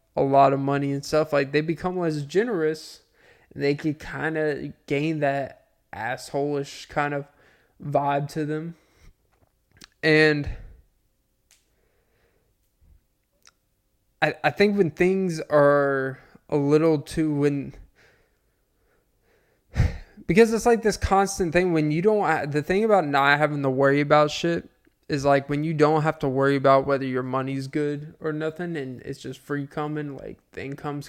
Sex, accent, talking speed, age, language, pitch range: male, American, 145 wpm, 20-39, English, 140-165 Hz